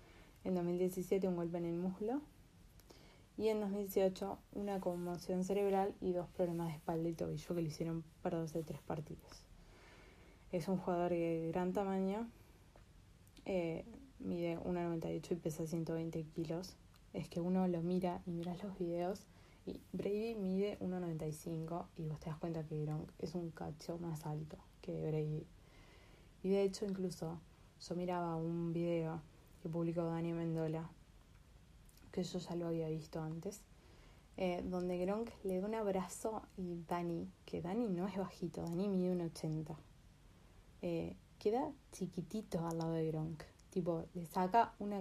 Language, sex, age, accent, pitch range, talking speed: Spanish, female, 20-39, Argentinian, 165-190 Hz, 155 wpm